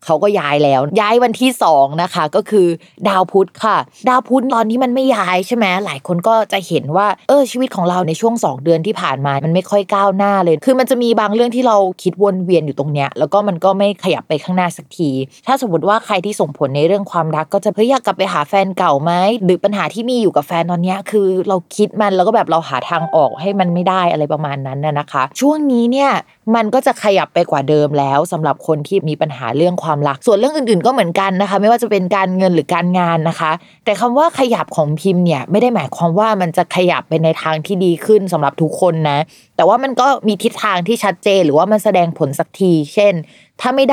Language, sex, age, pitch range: Thai, female, 20-39, 165-220 Hz